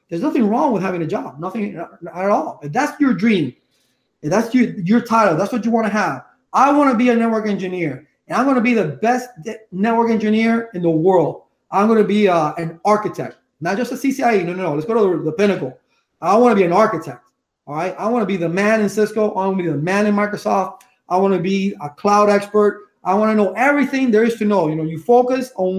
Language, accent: English, American